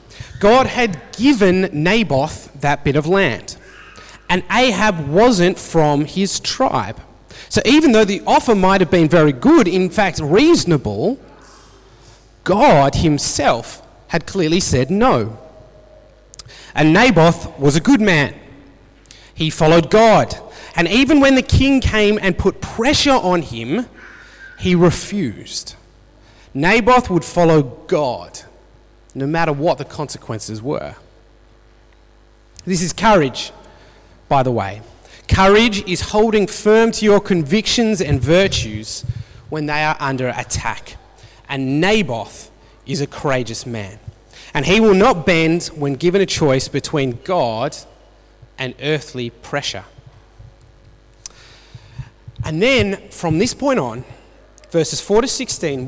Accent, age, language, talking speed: Australian, 30-49, English, 125 wpm